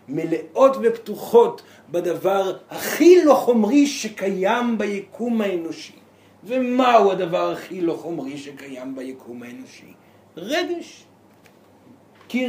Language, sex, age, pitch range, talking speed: Hebrew, male, 50-69, 190-275 Hz, 90 wpm